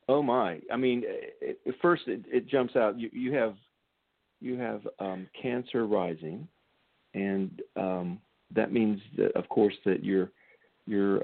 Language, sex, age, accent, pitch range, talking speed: English, male, 50-69, American, 100-120 Hz, 155 wpm